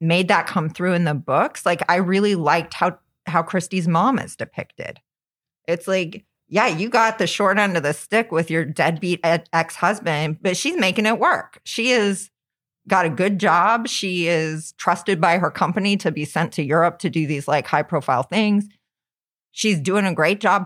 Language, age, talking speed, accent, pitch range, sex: English, 30-49, 190 wpm, American, 165-215 Hz, female